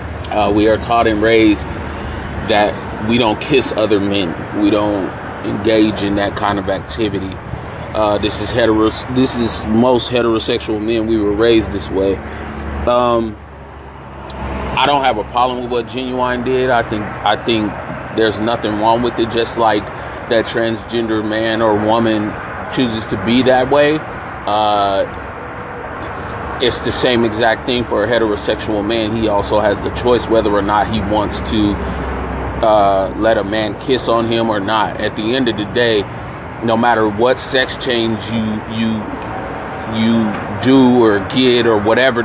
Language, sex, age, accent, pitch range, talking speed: English, male, 20-39, American, 100-115 Hz, 160 wpm